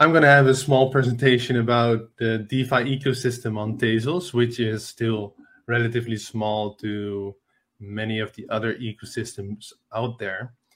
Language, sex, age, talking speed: English, male, 20-39, 145 wpm